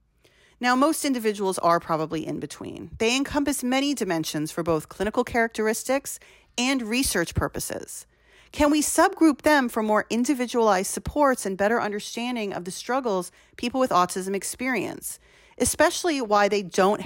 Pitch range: 170-255 Hz